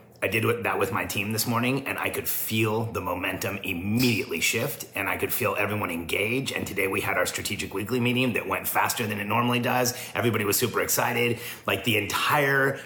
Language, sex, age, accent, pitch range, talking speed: English, male, 30-49, American, 100-120 Hz, 205 wpm